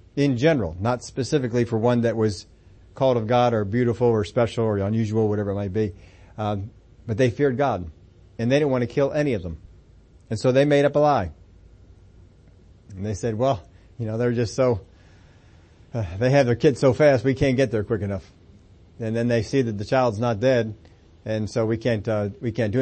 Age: 40-59